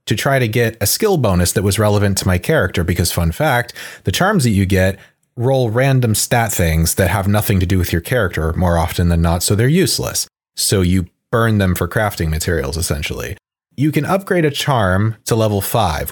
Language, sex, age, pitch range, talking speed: English, male, 30-49, 95-130 Hz, 205 wpm